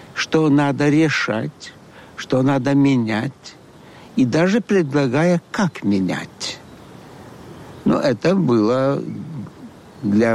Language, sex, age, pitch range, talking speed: Ukrainian, male, 60-79, 125-165 Hz, 85 wpm